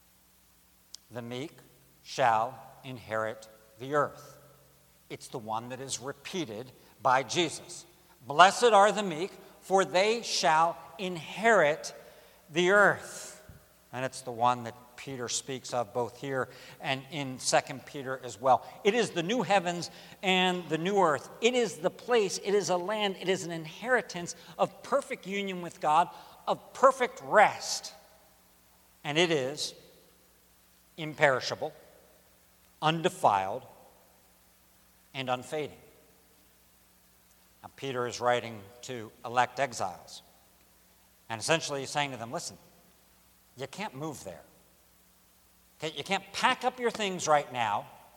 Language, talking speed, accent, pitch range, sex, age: English, 130 wpm, American, 120-185 Hz, male, 60-79